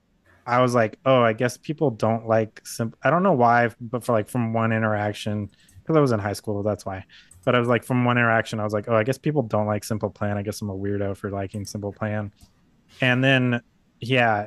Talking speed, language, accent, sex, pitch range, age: 240 wpm, English, American, male, 105-125 Hz, 20-39